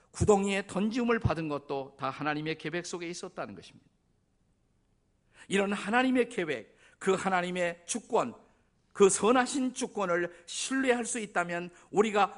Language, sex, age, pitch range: Korean, male, 50-69, 135-200 Hz